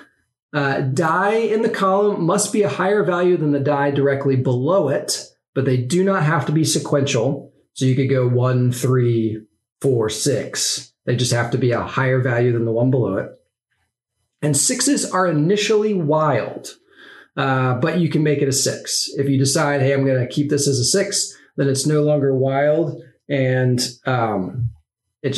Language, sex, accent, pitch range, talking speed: English, male, American, 135-185 Hz, 180 wpm